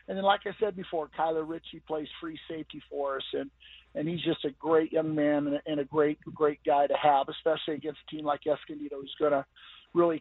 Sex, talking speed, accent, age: male, 235 wpm, American, 50-69